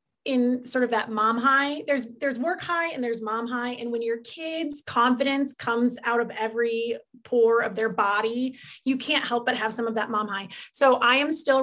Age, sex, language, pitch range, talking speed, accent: 30-49, female, English, 220-260 Hz, 210 wpm, American